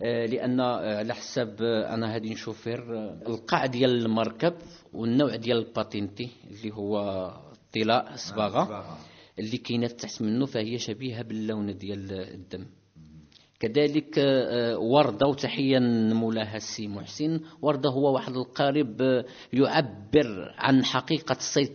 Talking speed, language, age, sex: 105 wpm, English, 50-69, male